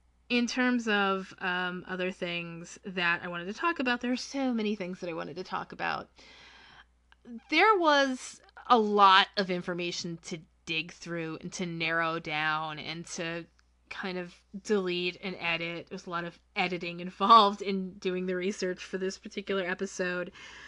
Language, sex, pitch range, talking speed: English, female, 170-205 Hz, 165 wpm